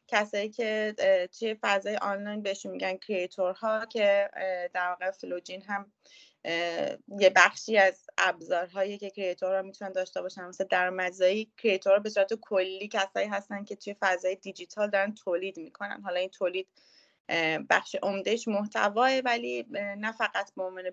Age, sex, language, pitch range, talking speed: 20-39, female, Persian, 190-225 Hz, 135 wpm